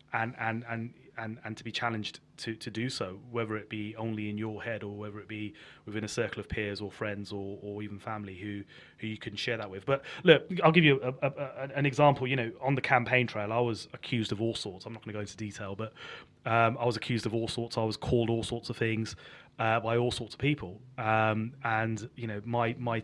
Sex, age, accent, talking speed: male, 30-49, British, 250 wpm